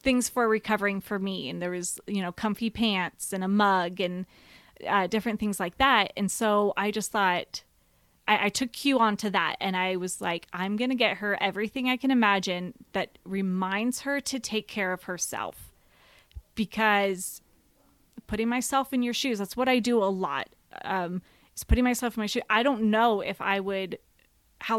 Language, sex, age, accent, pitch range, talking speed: English, female, 20-39, American, 195-240 Hz, 195 wpm